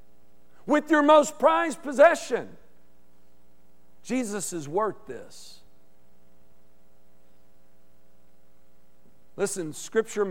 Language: English